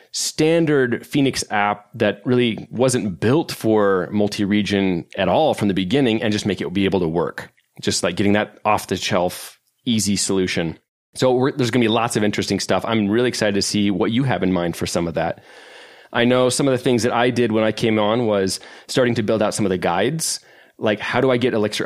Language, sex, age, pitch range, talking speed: English, male, 30-49, 100-120 Hz, 225 wpm